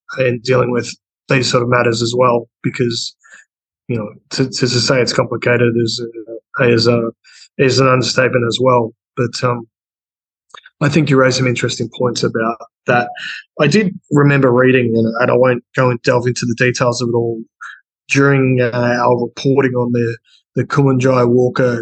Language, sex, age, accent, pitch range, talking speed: English, male, 20-39, Australian, 120-135 Hz, 175 wpm